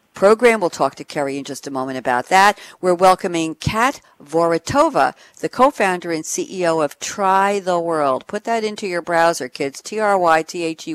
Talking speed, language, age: 165 wpm, English, 60-79